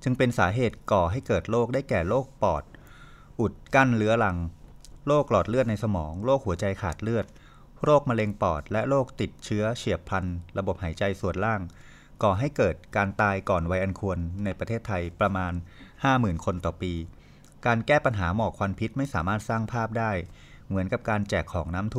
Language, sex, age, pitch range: Thai, male, 20-39, 95-120 Hz